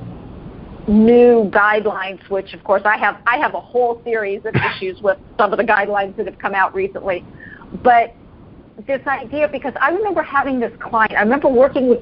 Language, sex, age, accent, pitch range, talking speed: English, female, 50-69, American, 195-250 Hz, 185 wpm